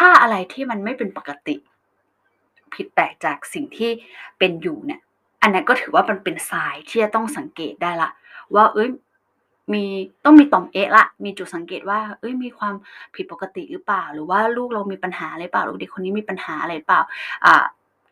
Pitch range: 190-255 Hz